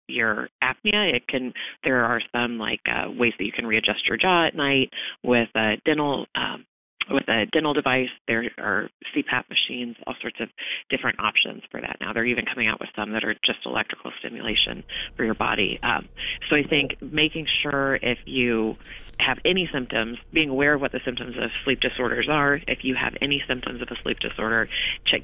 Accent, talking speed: American, 195 wpm